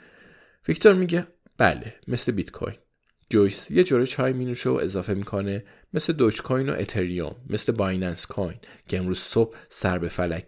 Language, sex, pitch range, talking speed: Persian, male, 95-130 Hz, 160 wpm